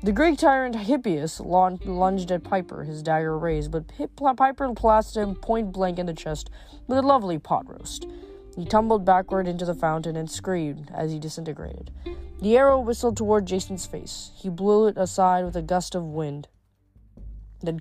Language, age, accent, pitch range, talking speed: English, 20-39, American, 155-205 Hz, 170 wpm